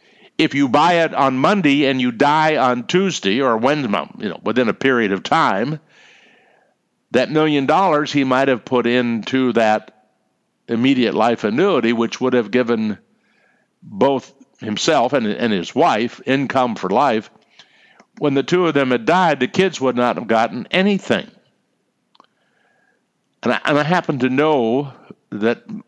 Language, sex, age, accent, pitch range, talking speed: English, male, 60-79, American, 115-155 Hz, 150 wpm